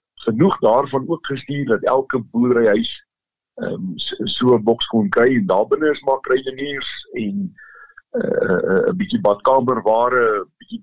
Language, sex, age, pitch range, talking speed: Swedish, male, 50-69, 125-205 Hz, 150 wpm